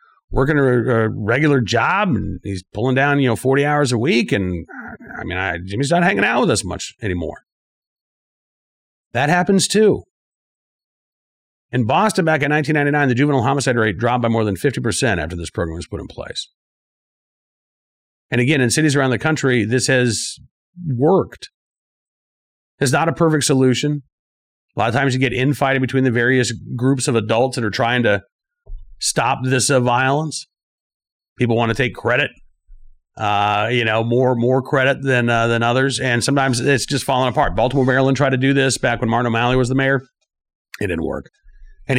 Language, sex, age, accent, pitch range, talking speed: English, male, 40-59, American, 110-140 Hz, 175 wpm